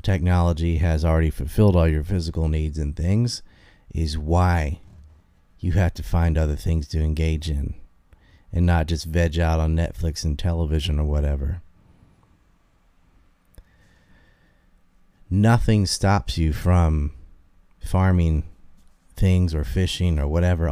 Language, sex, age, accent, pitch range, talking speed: English, male, 30-49, American, 80-95 Hz, 120 wpm